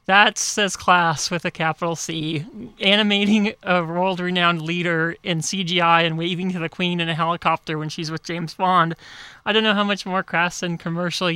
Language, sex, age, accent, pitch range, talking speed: English, male, 30-49, American, 170-200 Hz, 185 wpm